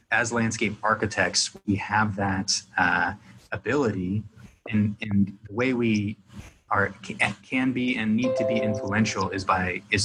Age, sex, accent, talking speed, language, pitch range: 20-39, male, American, 150 wpm, English, 100-110 Hz